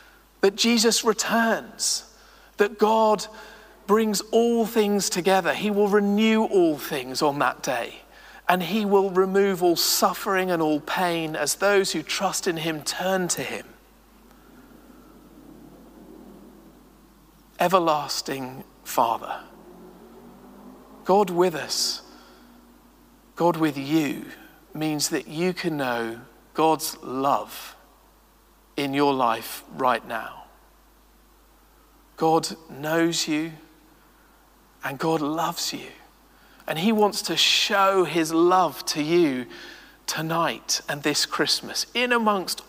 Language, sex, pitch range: English, male, 155-205 Hz